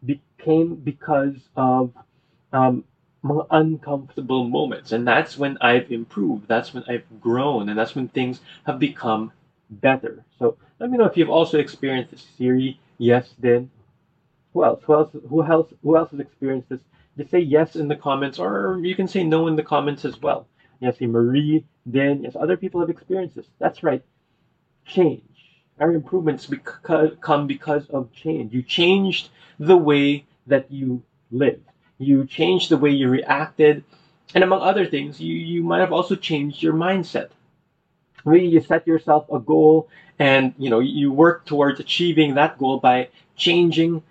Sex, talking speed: male, 170 wpm